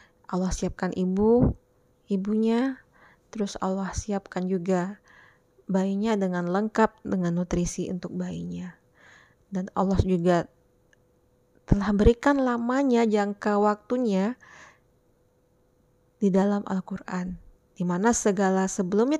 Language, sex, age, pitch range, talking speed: Indonesian, female, 20-39, 175-210 Hz, 90 wpm